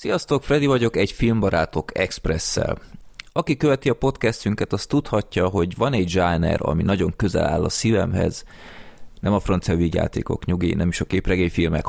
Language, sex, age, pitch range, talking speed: Hungarian, male, 30-49, 85-105 Hz, 155 wpm